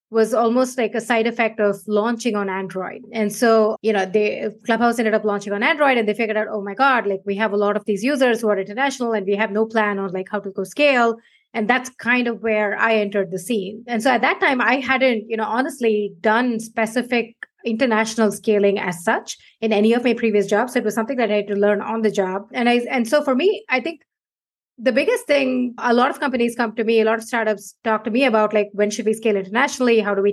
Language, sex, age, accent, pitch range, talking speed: English, female, 30-49, Indian, 205-245 Hz, 245 wpm